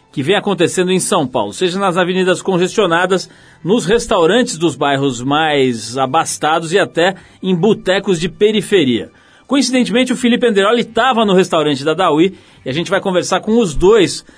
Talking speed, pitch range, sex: 165 wpm, 160-205 Hz, male